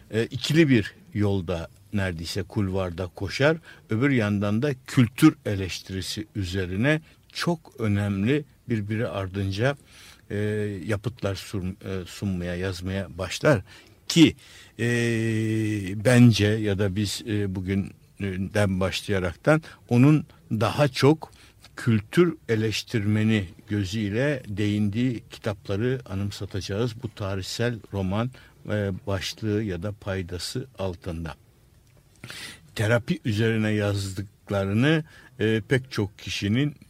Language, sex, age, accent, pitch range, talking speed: Turkish, male, 60-79, native, 95-120 Hz, 80 wpm